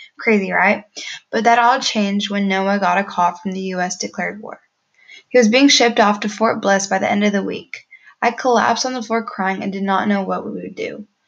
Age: 10-29